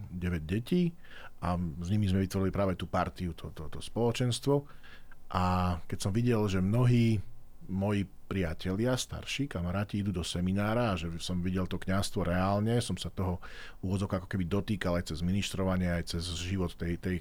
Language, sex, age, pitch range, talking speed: Slovak, male, 40-59, 90-105 Hz, 170 wpm